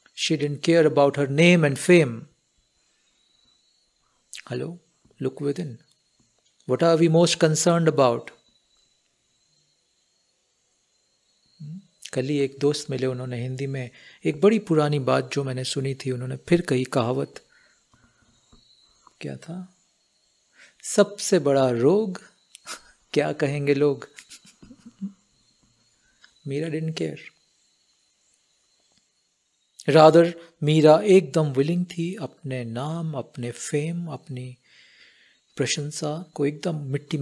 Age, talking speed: 50-69, 100 wpm